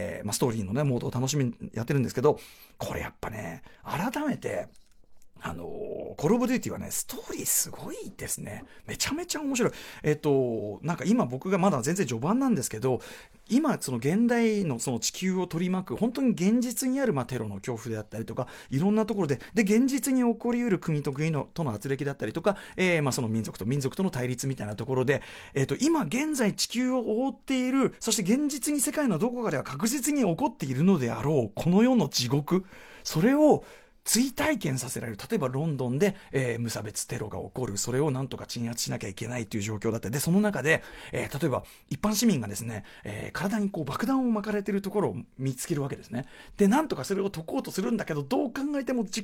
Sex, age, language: male, 40-59, Japanese